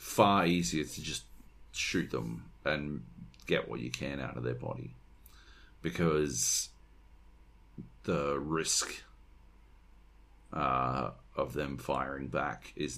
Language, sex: English, male